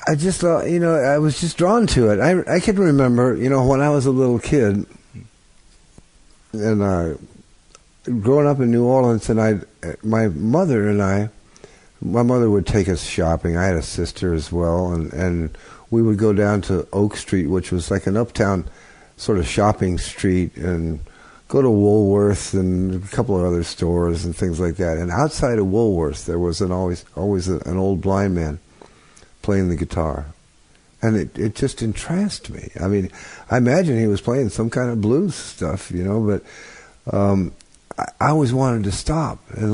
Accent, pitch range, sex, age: American, 90-120 Hz, male, 60-79